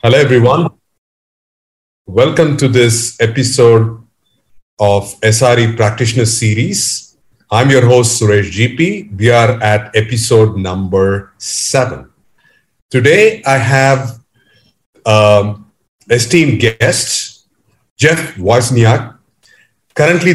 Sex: male